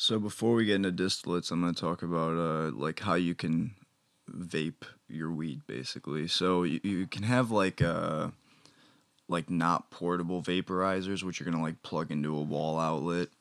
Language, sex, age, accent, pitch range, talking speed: English, male, 20-39, American, 80-95 Hz, 185 wpm